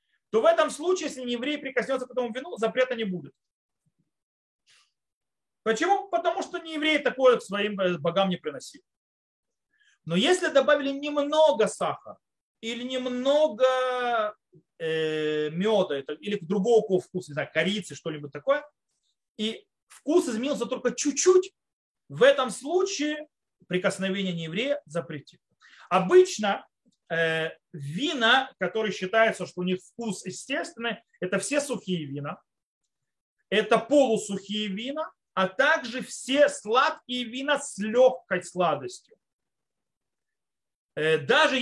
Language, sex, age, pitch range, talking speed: Russian, male, 30-49, 185-285 Hz, 110 wpm